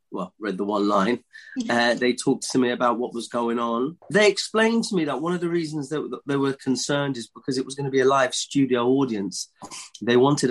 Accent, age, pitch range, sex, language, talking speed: British, 30-49, 115-135 Hz, male, English, 235 wpm